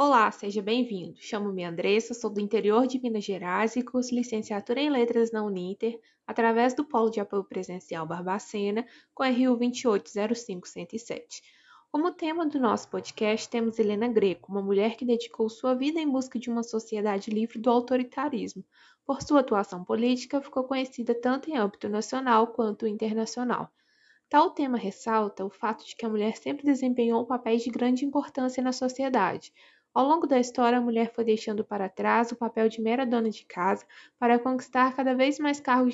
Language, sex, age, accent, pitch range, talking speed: Portuguese, female, 20-39, Brazilian, 220-265 Hz, 170 wpm